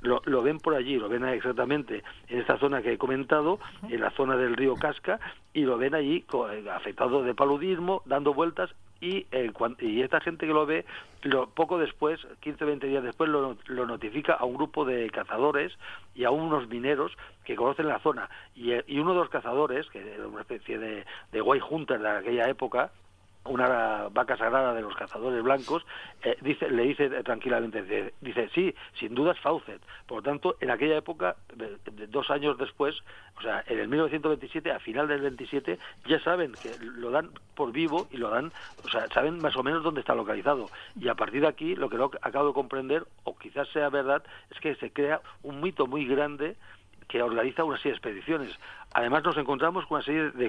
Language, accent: Spanish, Spanish